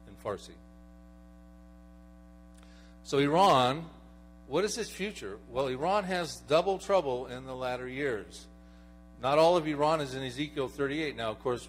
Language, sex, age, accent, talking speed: English, male, 50-69, American, 140 wpm